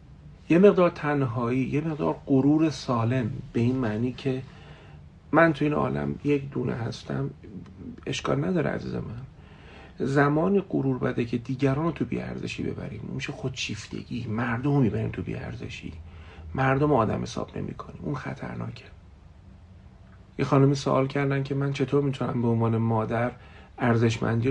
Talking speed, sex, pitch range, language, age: 140 wpm, male, 105-135 Hz, Persian, 40-59